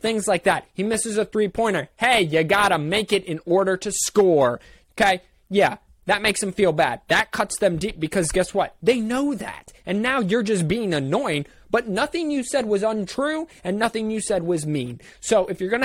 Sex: male